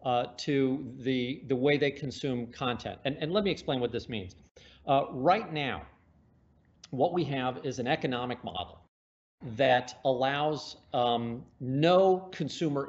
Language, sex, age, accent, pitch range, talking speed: English, male, 40-59, American, 125-165 Hz, 145 wpm